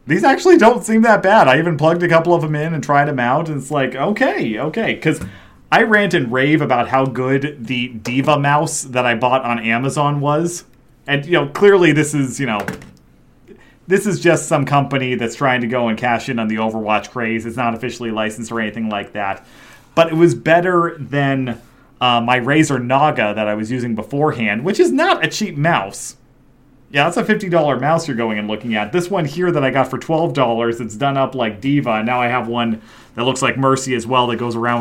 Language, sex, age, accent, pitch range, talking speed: English, male, 30-49, American, 120-165 Hz, 225 wpm